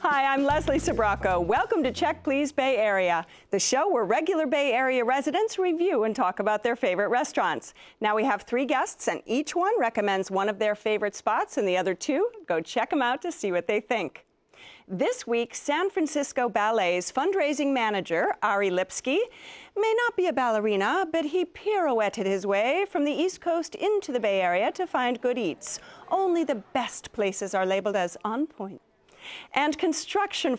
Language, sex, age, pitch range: English, female, 40-59, 210-340 Hz